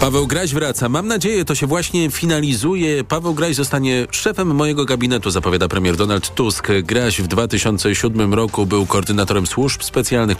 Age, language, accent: 40-59, Polish, native